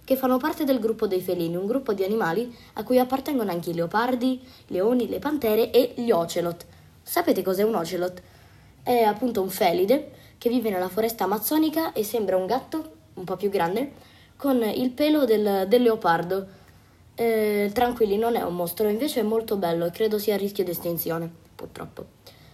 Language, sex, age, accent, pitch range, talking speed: Italian, female, 20-39, native, 180-245 Hz, 185 wpm